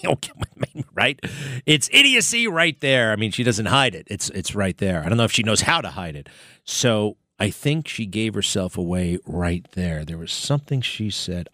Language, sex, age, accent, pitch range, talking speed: English, male, 40-59, American, 95-145 Hz, 205 wpm